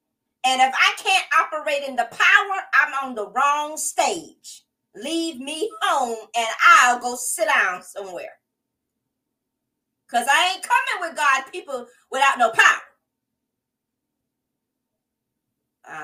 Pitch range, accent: 250-370 Hz, American